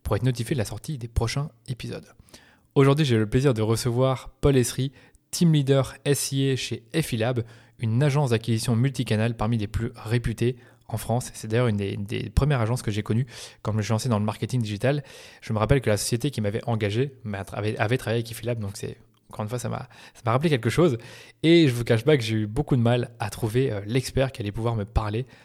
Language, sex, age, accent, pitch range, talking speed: French, male, 20-39, French, 110-135 Hz, 235 wpm